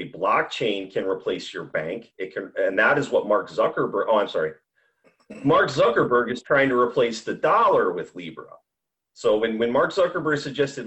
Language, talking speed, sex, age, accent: English, 175 wpm, male, 30-49, American